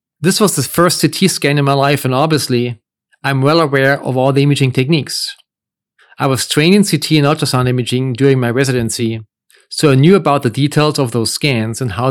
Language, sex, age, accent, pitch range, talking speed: English, male, 40-59, German, 130-155 Hz, 205 wpm